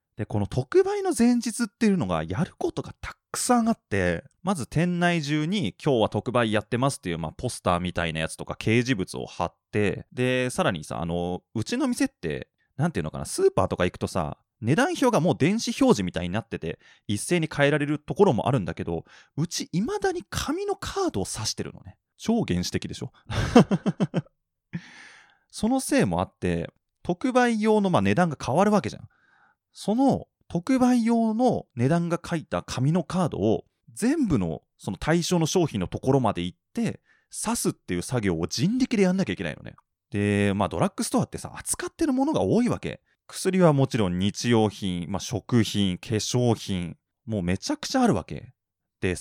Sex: male